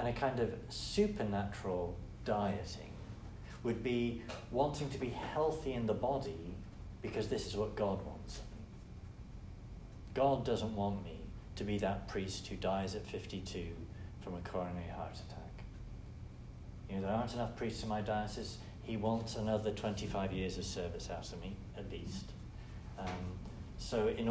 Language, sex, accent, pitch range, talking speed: English, male, British, 95-115 Hz, 150 wpm